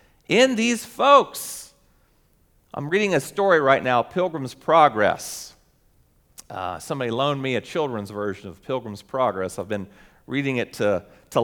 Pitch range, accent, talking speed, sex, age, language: 160-240 Hz, American, 140 wpm, male, 40-59, English